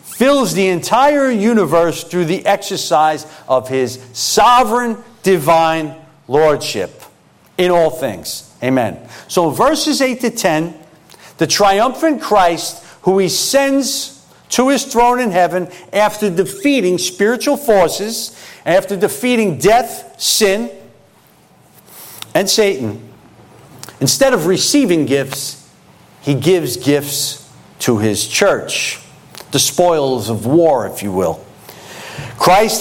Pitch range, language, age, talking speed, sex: 150-220 Hz, English, 50-69, 110 wpm, male